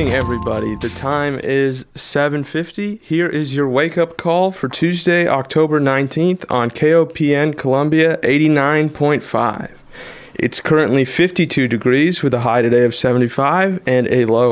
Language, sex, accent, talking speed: English, male, American, 135 wpm